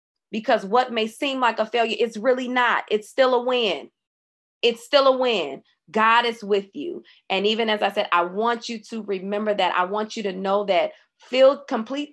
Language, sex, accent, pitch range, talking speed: English, female, American, 190-240 Hz, 205 wpm